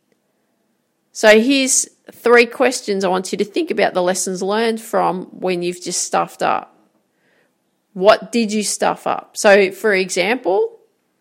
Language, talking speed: English, 145 wpm